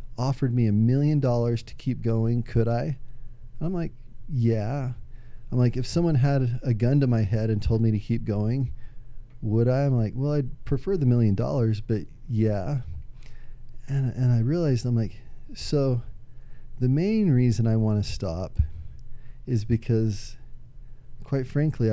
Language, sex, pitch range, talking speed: English, male, 115-130 Hz, 165 wpm